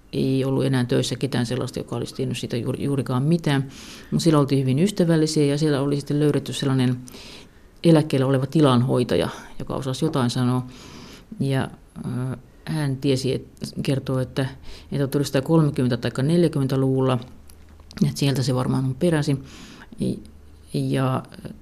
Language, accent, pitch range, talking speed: Finnish, native, 130-150 Hz, 130 wpm